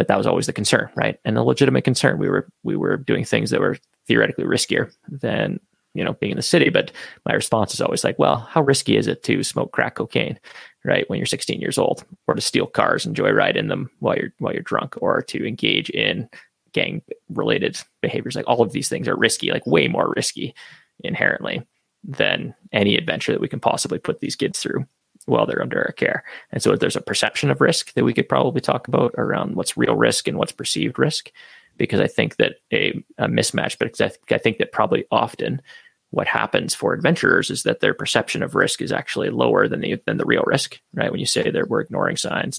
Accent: American